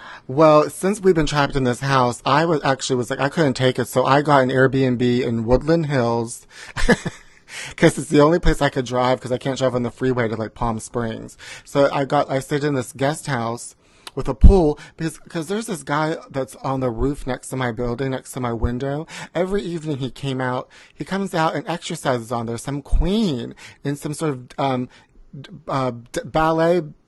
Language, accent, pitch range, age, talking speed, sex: English, American, 130-165 Hz, 30-49, 210 wpm, male